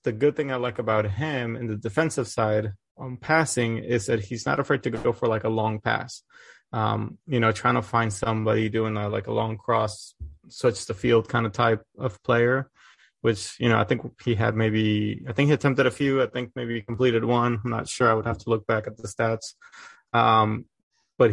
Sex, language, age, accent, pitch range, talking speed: male, English, 20-39, American, 110-130 Hz, 220 wpm